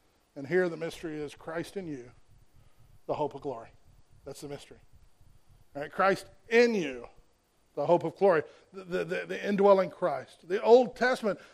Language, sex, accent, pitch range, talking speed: English, male, American, 160-210 Hz, 160 wpm